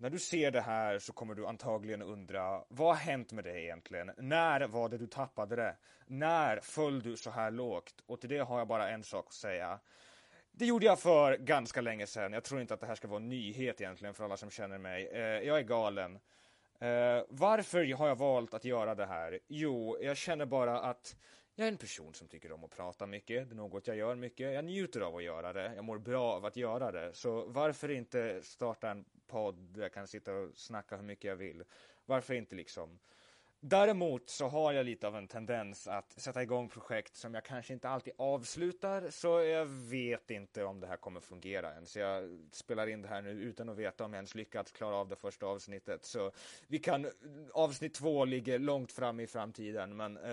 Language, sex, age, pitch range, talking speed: Swedish, male, 30-49, 105-140 Hz, 215 wpm